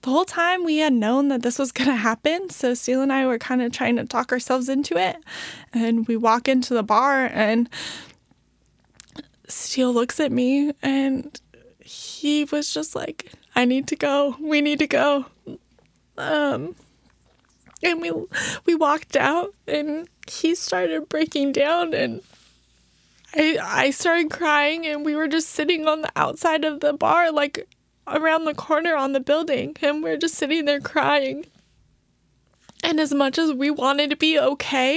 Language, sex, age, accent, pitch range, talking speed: English, female, 20-39, American, 270-320 Hz, 165 wpm